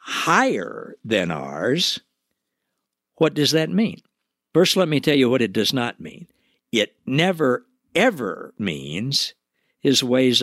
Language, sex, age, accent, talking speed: English, male, 60-79, American, 130 wpm